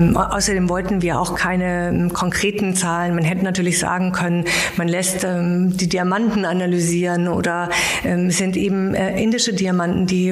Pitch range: 175-190 Hz